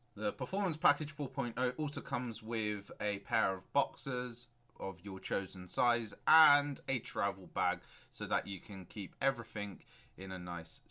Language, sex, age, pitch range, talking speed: English, male, 30-49, 110-150 Hz, 155 wpm